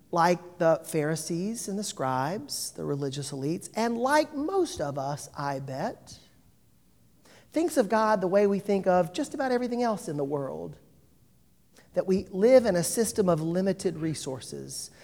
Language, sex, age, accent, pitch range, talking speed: English, male, 40-59, American, 155-220 Hz, 160 wpm